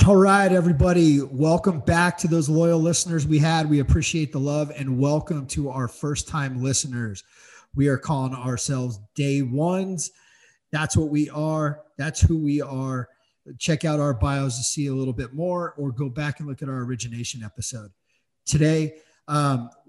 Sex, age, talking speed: male, 40-59, 170 wpm